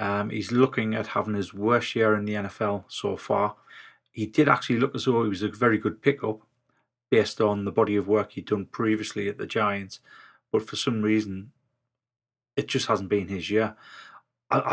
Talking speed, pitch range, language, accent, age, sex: 195 wpm, 110-130 Hz, English, British, 30-49, male